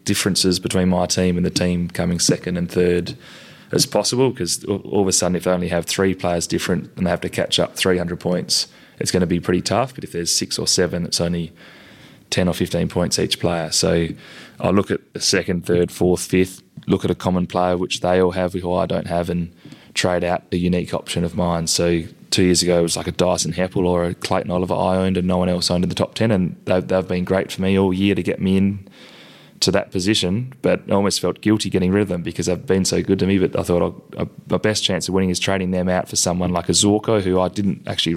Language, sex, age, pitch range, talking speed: English, male, 20-39, 85-95 Hz, 250 wpm